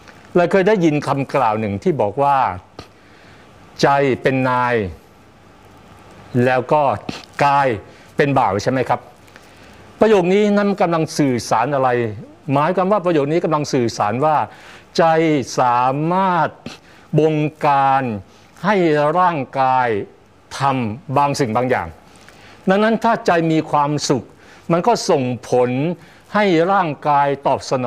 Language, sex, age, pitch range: Thai, male, 60-79, 130-175 Hz